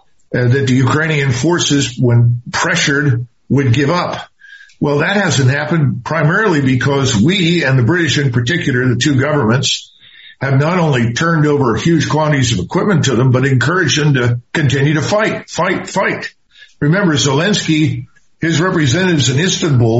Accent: American